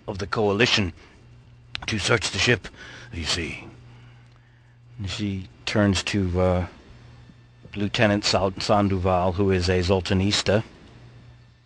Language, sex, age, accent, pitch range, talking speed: English, male, 60-79, American, 95-120 Hz, 105 wpm